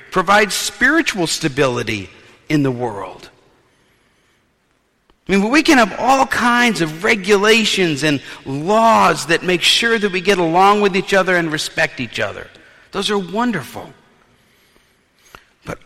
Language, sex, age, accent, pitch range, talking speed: English, male, 50-69, American, 130-200 Hz, 130 wpm